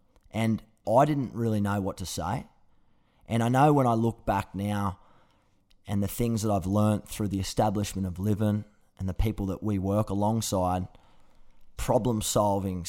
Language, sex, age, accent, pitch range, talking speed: English, male, 20-39, Australian, 100-110 Hz, 170 wpm